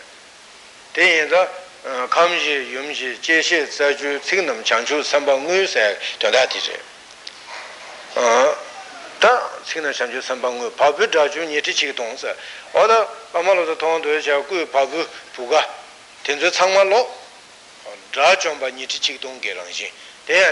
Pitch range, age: 135-165 Hz, 60-79